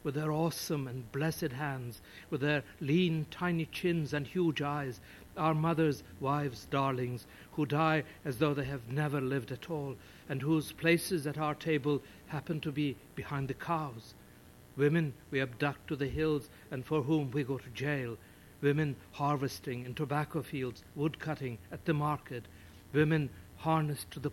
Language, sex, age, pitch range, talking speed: English, male, 60-79, 125-150 Hz, 165 wpm